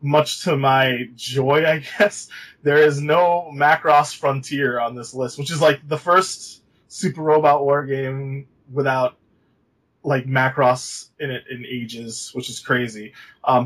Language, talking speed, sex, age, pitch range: English, 150 wpm, male, 20-39, 125-150 Hz